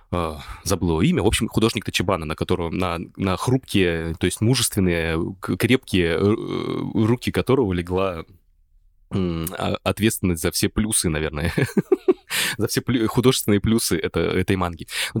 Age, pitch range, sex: 20-39, 85-110 Hz, male